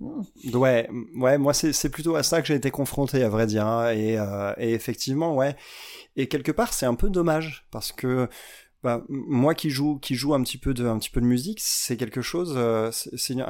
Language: French